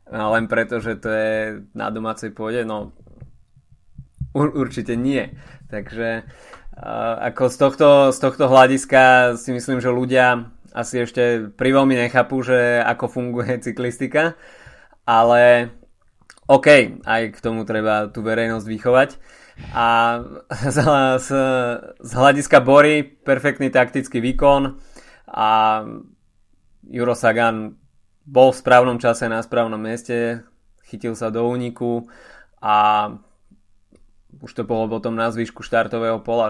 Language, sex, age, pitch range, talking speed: Slovak, male, 20-39, 110-125 Hz, 115 wpm